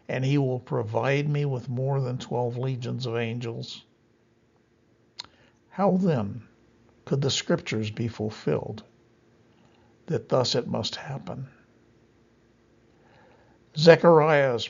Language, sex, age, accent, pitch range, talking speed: English, male, 60-79, American, 115-150 Hz, 100 wpm